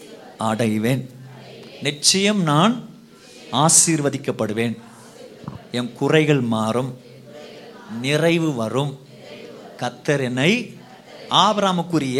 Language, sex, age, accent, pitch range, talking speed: Tamil, male, 50-69, native, 160-235 Hz, 55 wpm